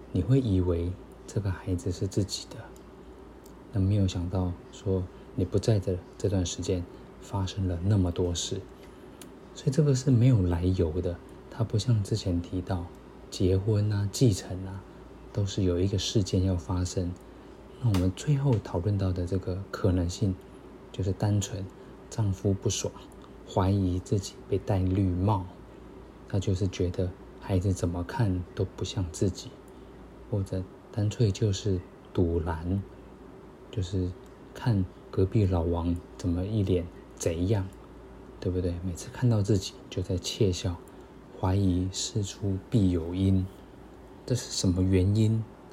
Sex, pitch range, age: male, 90-105 Hz, 20-39